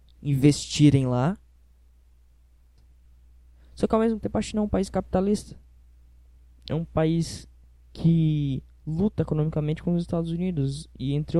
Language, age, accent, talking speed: Portuguese, 10-29, Brazilian, 130 wpm